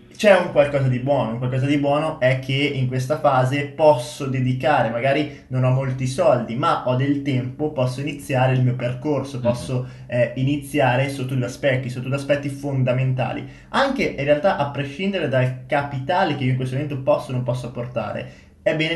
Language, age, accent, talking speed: Italian, 20-39, native, 185 wpm